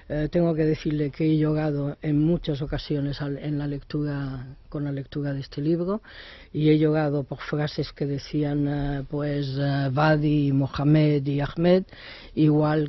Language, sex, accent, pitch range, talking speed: Spanish, female, Spanish, 145-160 Hz, 160 wpm